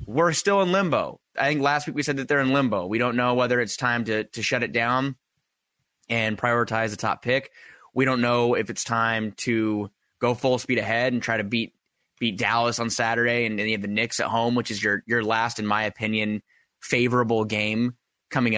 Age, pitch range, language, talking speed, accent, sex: 20-39, 110-125 Hz, English, 215 wpm, American, male